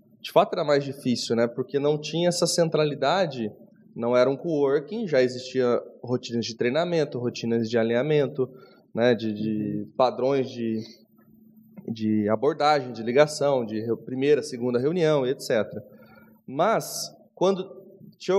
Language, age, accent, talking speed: Portuguese, 20-39, Brazilian, 130 wpm